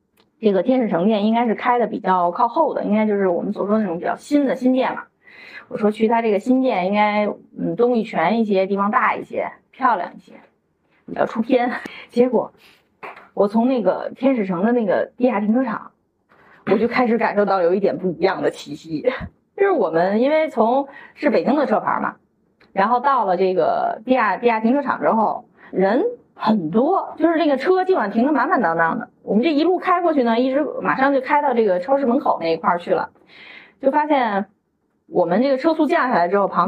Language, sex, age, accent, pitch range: Chinese, female, 30-49, native, 205-275 Hz